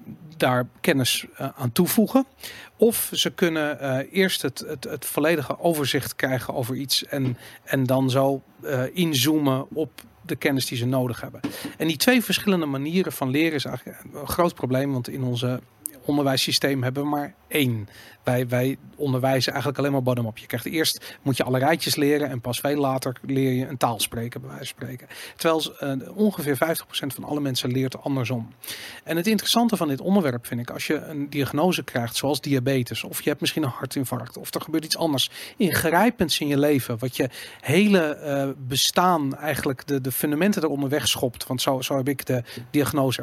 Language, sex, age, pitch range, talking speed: Dutch, male, 40-59, 130-170 Hz, 190 wpm